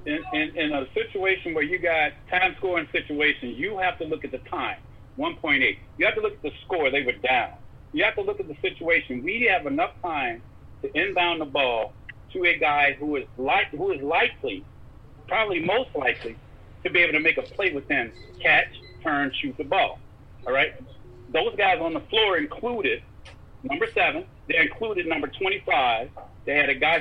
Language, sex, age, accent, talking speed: English, male, 50-69, American, 195 wpm